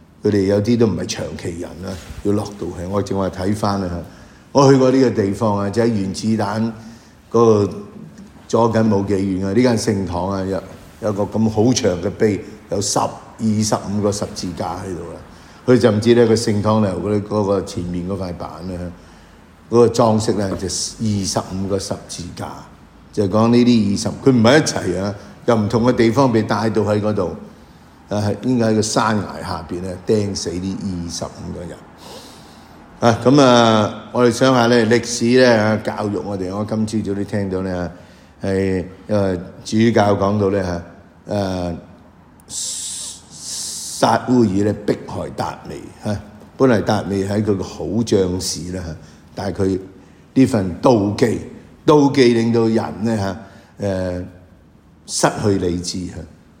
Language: English